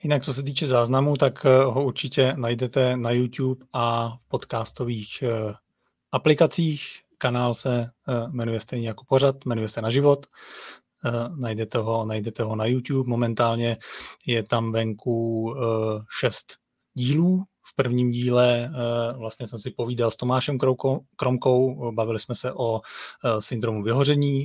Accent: native